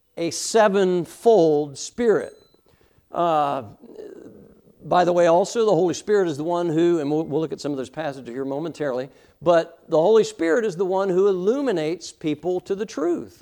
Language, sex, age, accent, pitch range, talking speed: English, male, 60-79, American, 150-195 Hz, 175 wpm